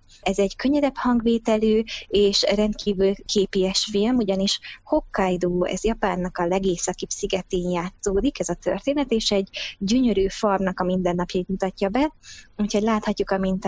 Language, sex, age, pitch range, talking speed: Hungarian, female, 20-39, 185-210 Hz, 130 wpm